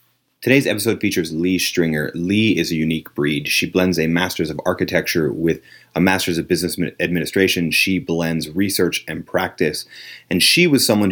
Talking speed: 165 wpm